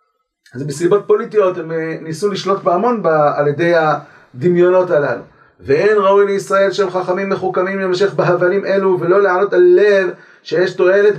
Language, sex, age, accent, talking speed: Hebrew, male, 40-59, native, 140 wpm